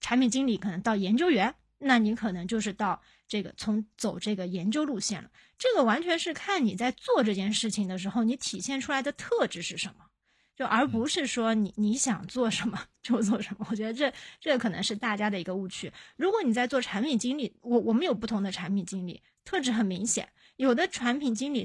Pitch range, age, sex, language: 200-270 Hz, 20-39, female, Chinese